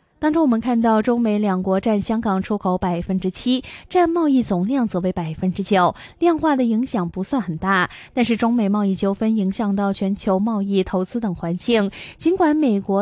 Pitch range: 185-245 Hz